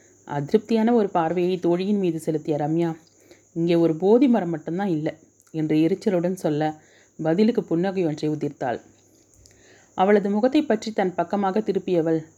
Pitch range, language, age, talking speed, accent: 160-195 Hz, Tamil, 30-49, 120 wpm, native